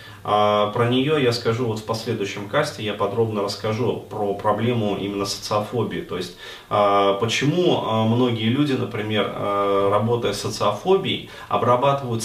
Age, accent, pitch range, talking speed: 20-39, native, 100-125 Hz, 120 wpm